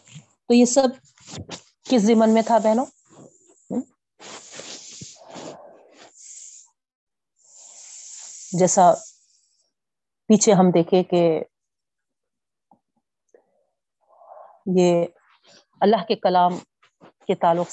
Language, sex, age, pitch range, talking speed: Urdu, female, 30-49, 170-225 Hz, 65 wpm